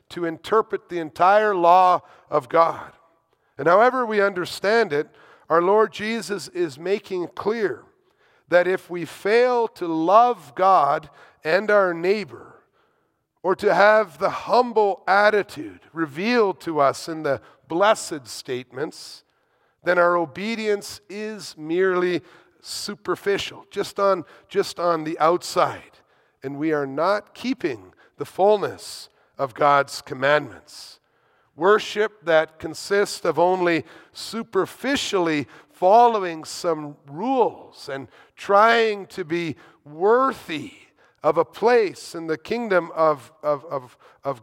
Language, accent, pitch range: English, American, 160-215 Hz